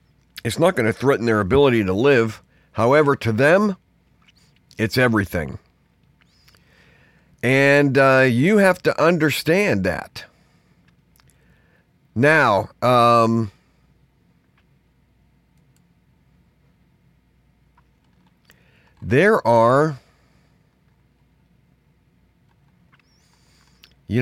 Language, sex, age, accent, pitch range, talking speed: English, male, 50-69, American, 115-160 Hz, 65 wpm